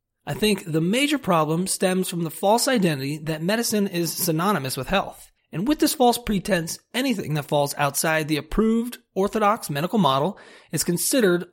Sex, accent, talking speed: male, American, 165 wpm